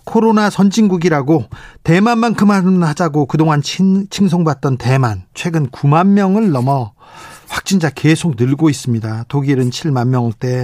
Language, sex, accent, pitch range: Korean, male, native, 140-180 Hz